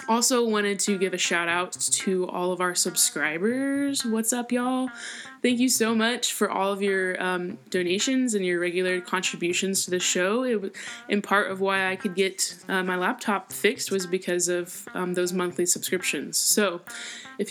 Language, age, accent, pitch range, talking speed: English, 10-29, American, 175-220 Hz, 180 wpm